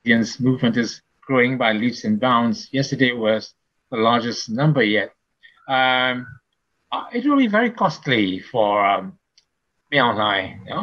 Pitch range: 120-170 Hz